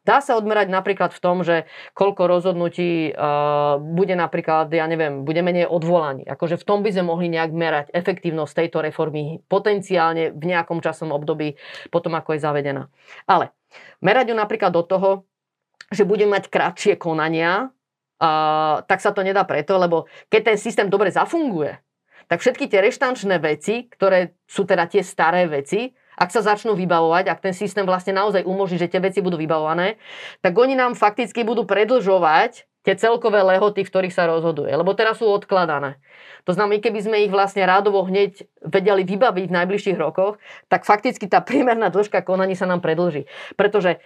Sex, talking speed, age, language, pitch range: female, 170 wpm, 30-49, Slovak, 165-205 Hz